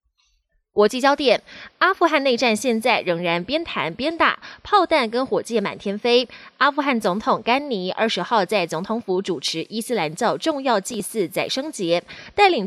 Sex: female